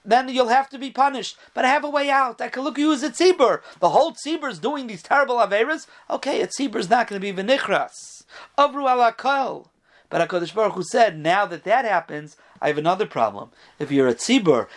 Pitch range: 155-255 Hz